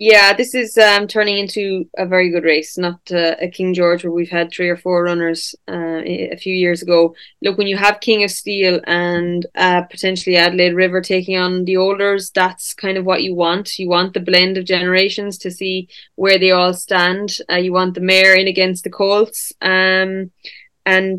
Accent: Irish